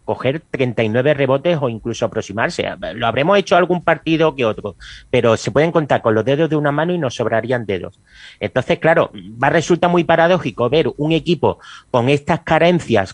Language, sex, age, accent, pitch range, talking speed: Spanish, male, 30-49, Spanish, 125-170 Hz, 175 wpm